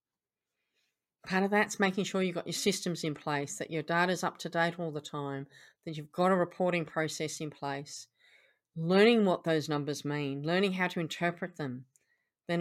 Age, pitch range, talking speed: 40-59, 155-215 Hz, 190 wpm